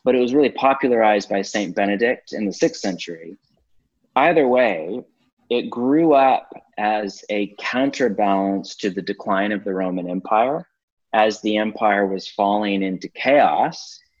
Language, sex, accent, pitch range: English, male, American, 100-130 Hz